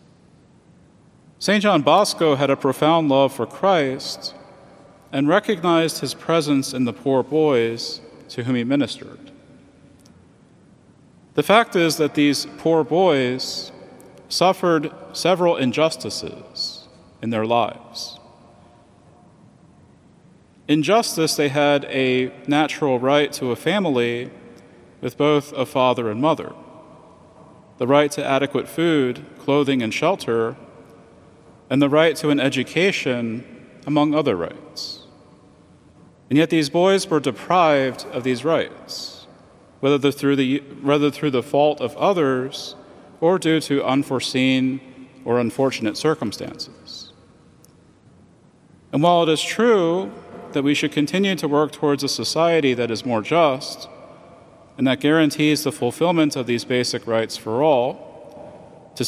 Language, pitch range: English, 125-155 Hz